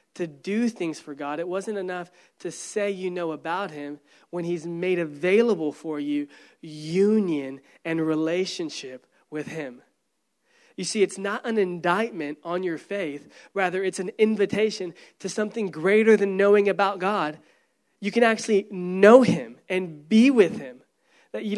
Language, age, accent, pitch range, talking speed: English, 20-39, American, 175-215 Hz, 155 wpm